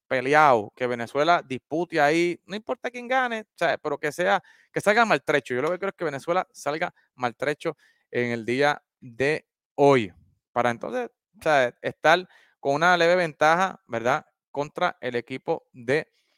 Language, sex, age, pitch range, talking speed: Spanish, male, 30-49, 125-155 Hz, 165 wpm